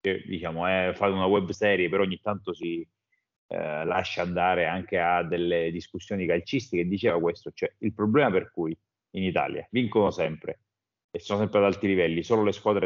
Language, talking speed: Italian, 175 wpm